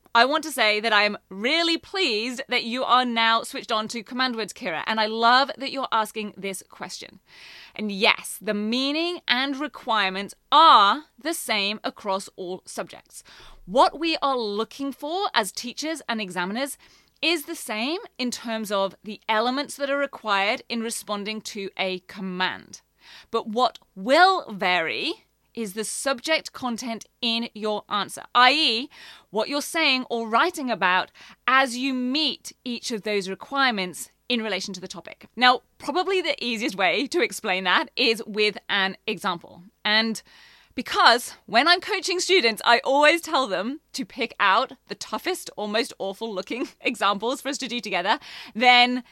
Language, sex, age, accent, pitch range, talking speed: English, female, 30-49, British, 210-275 Hz, 160 wpm